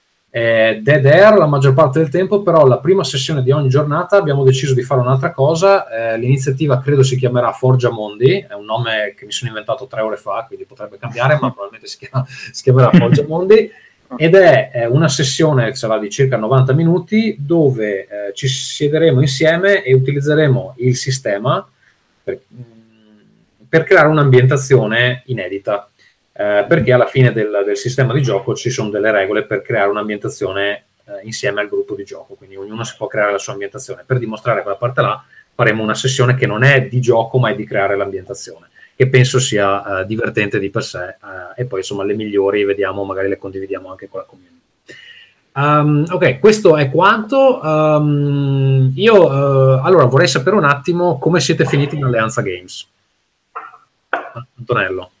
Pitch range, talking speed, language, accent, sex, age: 110-150 Hz, 175 wpm, Italian, native, male, 30-49